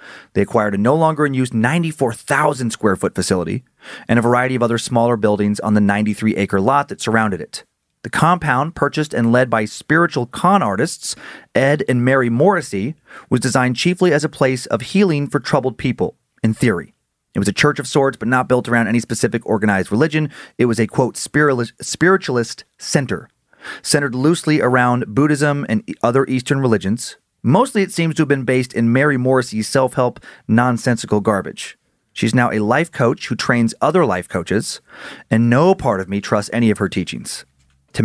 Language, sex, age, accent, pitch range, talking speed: English, male, 30-49, American, 110-140 Hz, 170 wpm